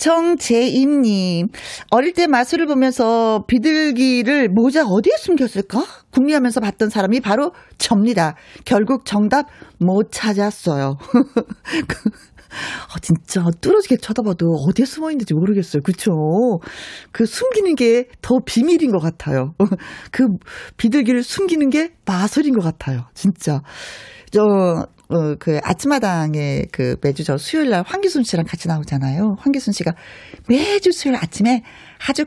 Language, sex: Korean, female